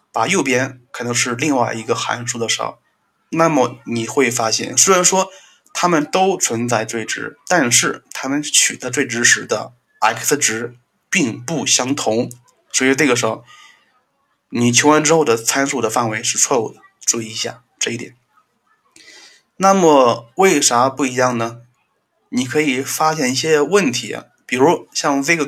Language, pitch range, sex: Chinese, 120-155 Hz, male